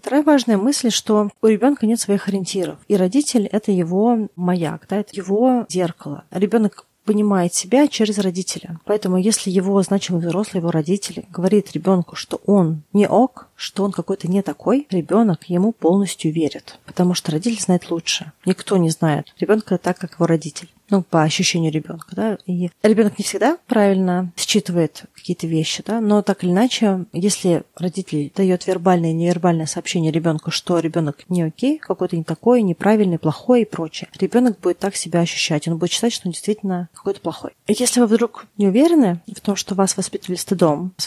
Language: Russian